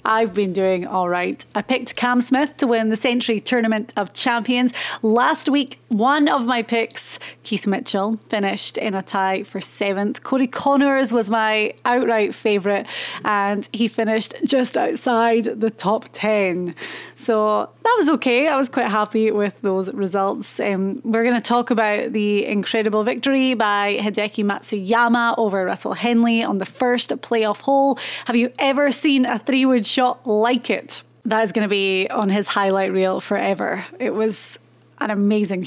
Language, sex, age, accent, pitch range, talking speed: English, female, 30-49, British, 200-240 Hz, 160 wpm